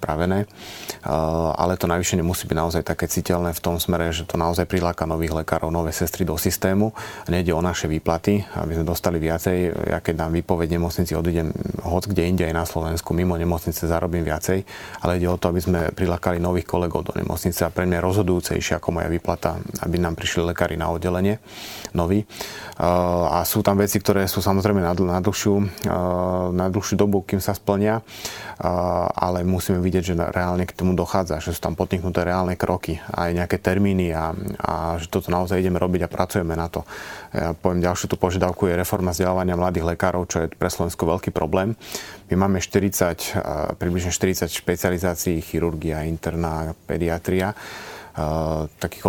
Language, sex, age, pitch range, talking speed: Slovak, male, 30-49, 85-95 Hz, 170 wpm